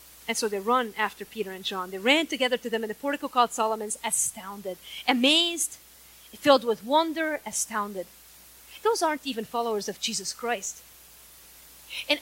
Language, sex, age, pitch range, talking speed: English, female, 30-49, 225-340 Hz, 155 wpm